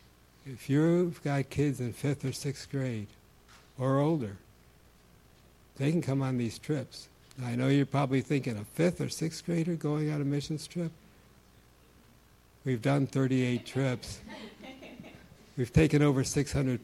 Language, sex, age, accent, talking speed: English, male, 60-79, American, 145 wpm